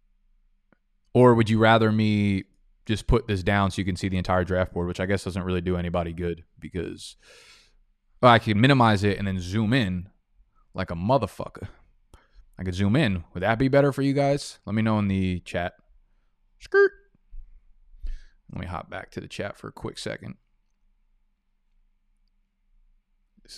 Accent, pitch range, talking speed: American, 95-125 Hz, 175 wpm